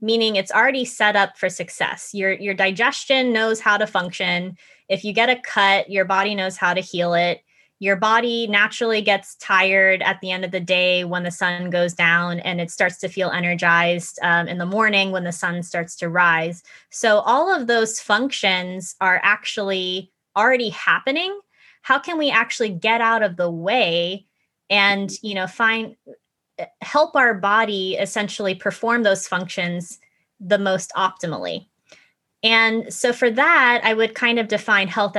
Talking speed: 170 wpm